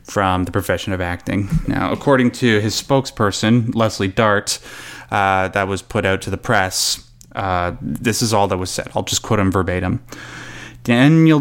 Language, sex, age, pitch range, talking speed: English, male, 20-39, 100-135 Hz, 175 wpm